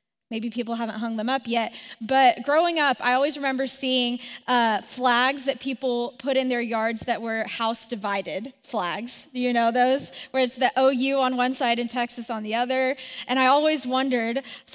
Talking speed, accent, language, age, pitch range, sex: 195 wpm, American, English, 10-29, 225-275 Hz, female